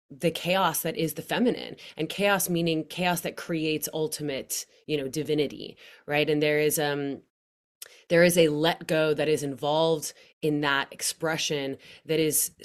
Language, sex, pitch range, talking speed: English, female, 145-165 Hz, 160 wpm